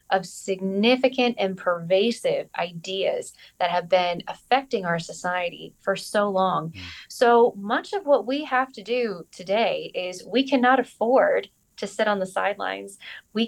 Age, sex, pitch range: 20-39, female, 185-240 Hz